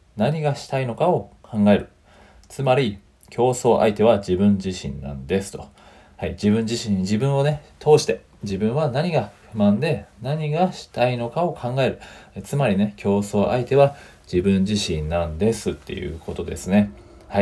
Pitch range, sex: 95-135 Hz, male